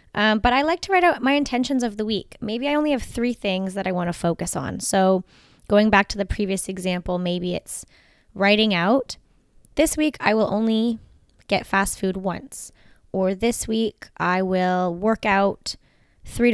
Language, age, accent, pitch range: English, 10-29, American, 180-225 Hz